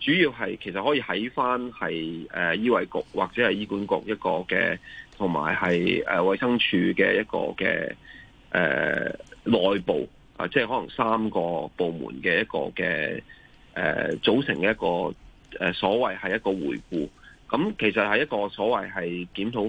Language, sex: Chinese, male